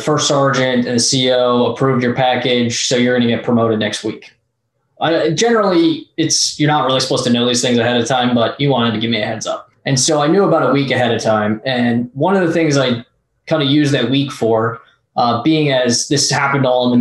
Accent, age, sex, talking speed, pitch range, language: American, 20-39, male, 245 wpm, 115-140 Hz, English